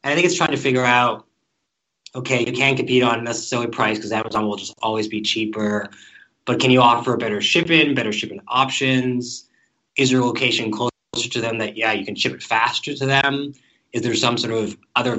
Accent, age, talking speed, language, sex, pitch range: American, 20-39, 205 wpm, English, male, 110-130 Hz